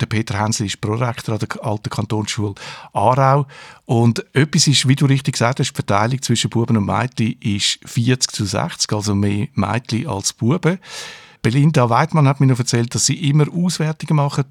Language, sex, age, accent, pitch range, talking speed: German, male, 50-69, Austrian, 115-145 Hz, 180 wpm